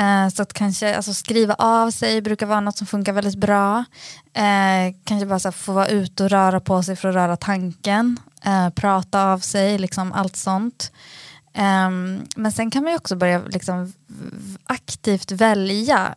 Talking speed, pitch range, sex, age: 175 wpm, 175-200 Hz, female, 20-39